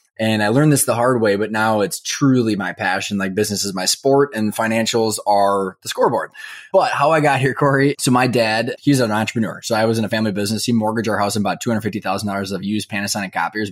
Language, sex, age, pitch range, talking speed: English, male, 20-39, 105-130 Hz, 250 wpm